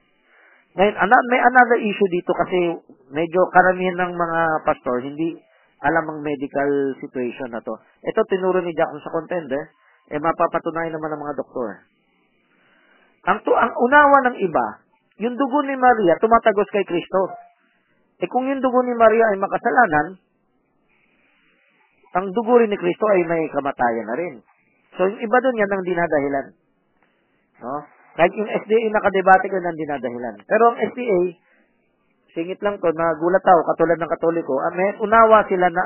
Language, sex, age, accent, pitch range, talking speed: Filipino, male, 40-59, native, 150-205 Hz, 155 wpm